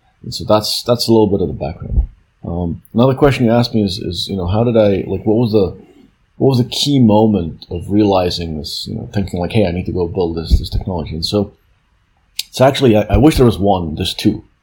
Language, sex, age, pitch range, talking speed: English, male, 30-49, 95-120 Hz, 250 wpm